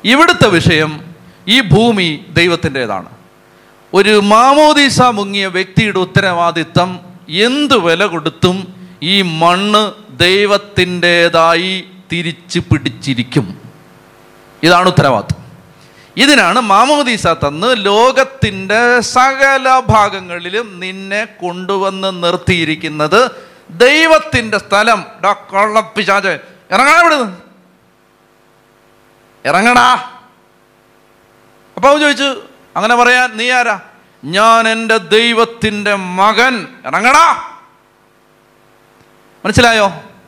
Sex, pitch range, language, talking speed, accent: male, 165-245 Hz, Malayalam, 70 wpm, native